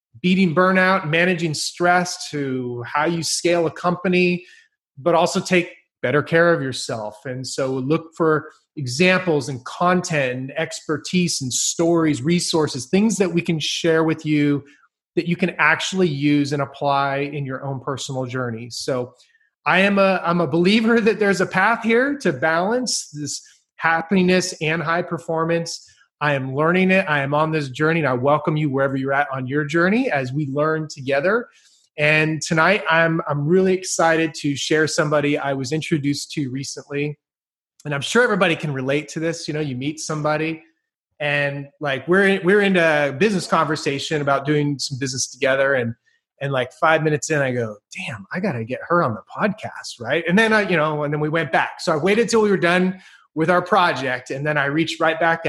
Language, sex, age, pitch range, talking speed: English, male, 30-49, 140-175 Hz, 185 wpm